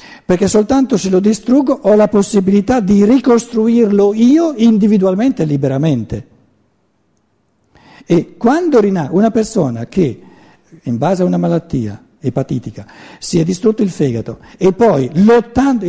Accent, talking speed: native, 125 wpm